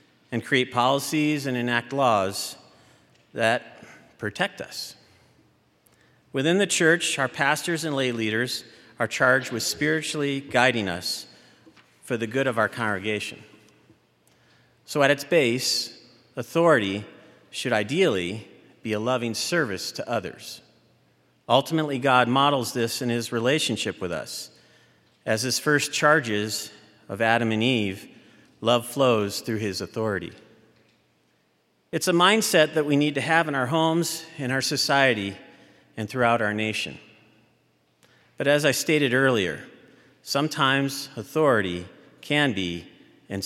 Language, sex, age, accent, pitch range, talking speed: English, male, 50-69, American, 110-145 Hz, 125 wpm